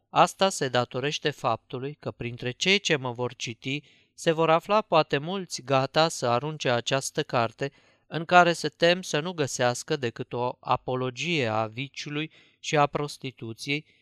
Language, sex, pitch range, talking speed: Romanian, male, 125-155 Hz, 155 wpm